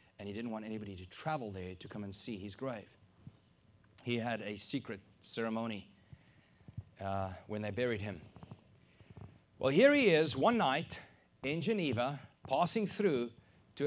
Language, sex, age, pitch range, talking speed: English, male, 30-49, 120-185 Hz, 150 wpm